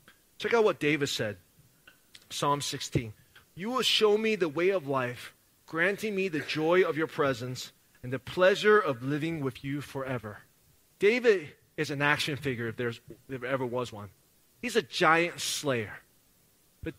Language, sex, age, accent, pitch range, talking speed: English, male, 30-49, American, 135-195 Hz, 165 wpm